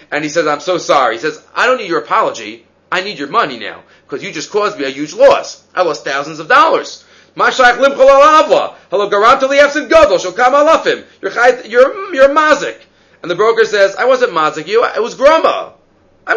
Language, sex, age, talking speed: English, male, 30-49, 165 wpm